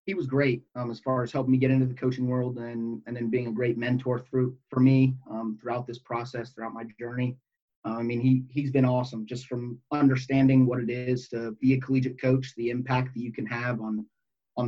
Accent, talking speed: American, 235 wpm